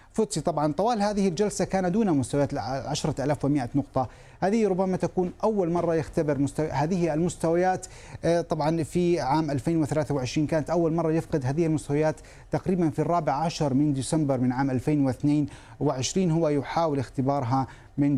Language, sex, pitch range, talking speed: Arabic, male, 140-165 Hz, 135 wpm